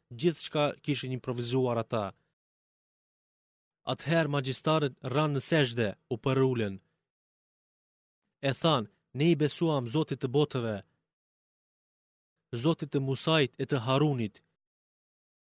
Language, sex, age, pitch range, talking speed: Greek, male, 30-49, 130-155 Hz, 100 wpm